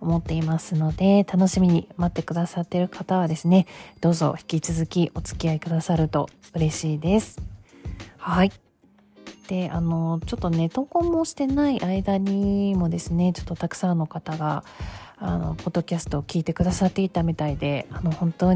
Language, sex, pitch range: Japanese, female, 165-200 Hz